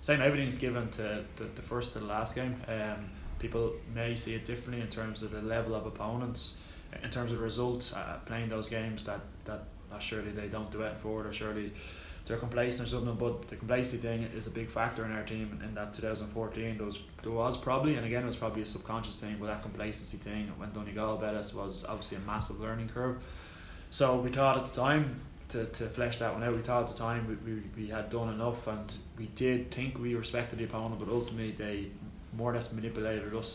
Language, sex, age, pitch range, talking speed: English, male, 20-39, 105-115 Hz, 225 wpm